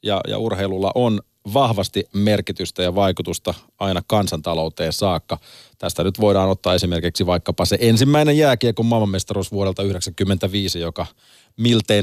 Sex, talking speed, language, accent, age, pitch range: male, 125 wpm, Finnish, native, 30-49, 90-115 Hz